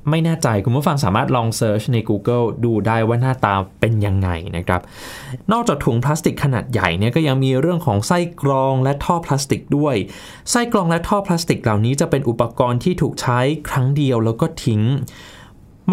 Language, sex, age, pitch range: Thai, male, 20-39, 115-155 Hz